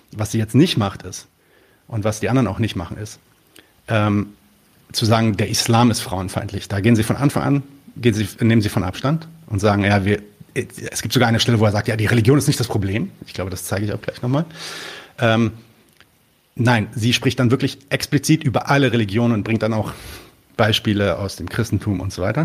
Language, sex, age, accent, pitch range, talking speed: German, male, 40-59, German, 100-120 Hz, 215 wpm